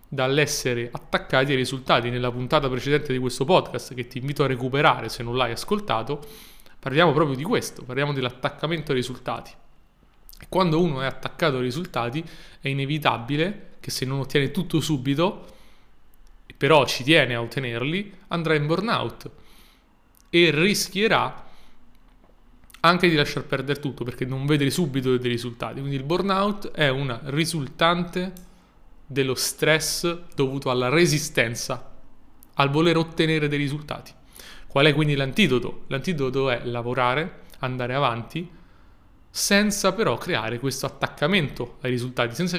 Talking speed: 135 wpm